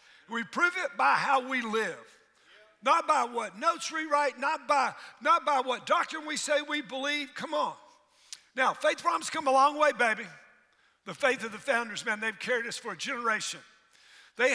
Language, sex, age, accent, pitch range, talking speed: English, male, 60-79, American, 210-290 Hz, 190 wpm